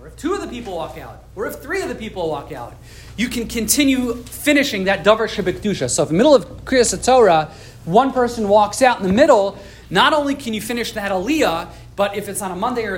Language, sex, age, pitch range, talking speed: English, male, 30-49, 180-240 Hz, 240 wpm